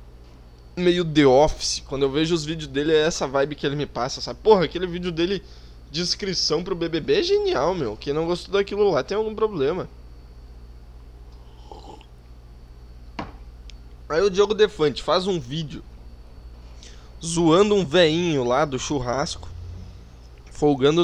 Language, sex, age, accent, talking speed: Portuguese, male, 20-39, Brazilian, 140 wpm